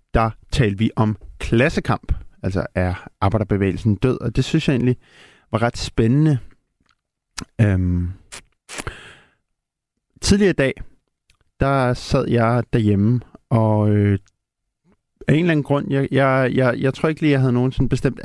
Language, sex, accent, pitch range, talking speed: Danish, male, native, 105-135 Hz, 150 wpm